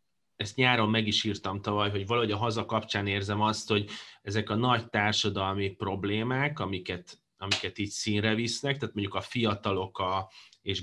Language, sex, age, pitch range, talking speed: Hungarian, male, 30-49, 100-115 Hz, 160 wpm